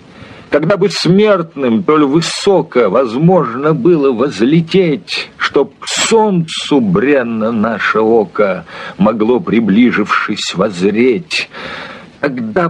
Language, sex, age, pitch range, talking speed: Hungarian, male, 50-69, 150-190 Hz, 85 wpm